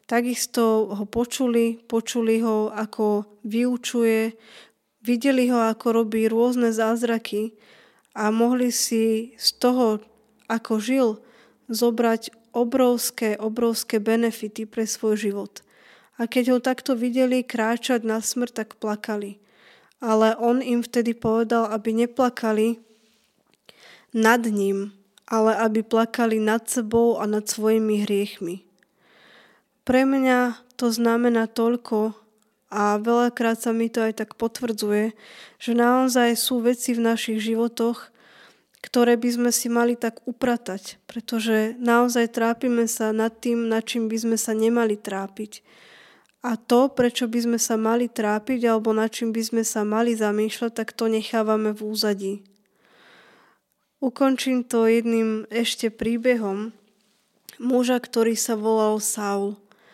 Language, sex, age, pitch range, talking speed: Slovak, female, 20-39, 220-240 Hz, 125 wpm